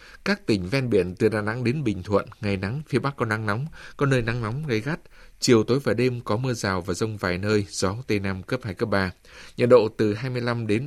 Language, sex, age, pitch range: Vietnamese, male, 20-39, 95-120 Hz